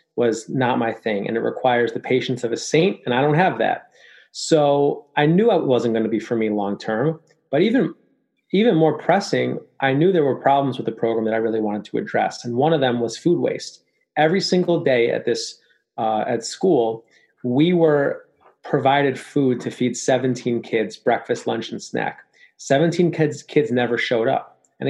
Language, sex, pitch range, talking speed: English, male, 125-160 Hz, 195 wpm